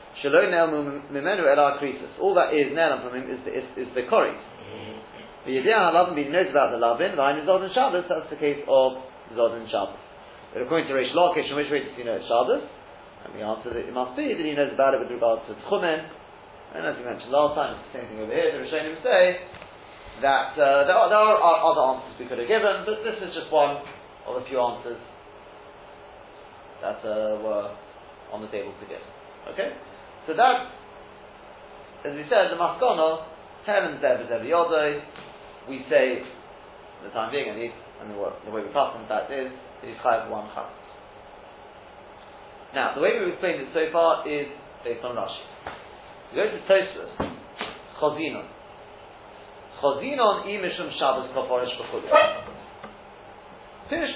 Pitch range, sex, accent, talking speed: 130-185 Hz, male, British, 175 wpm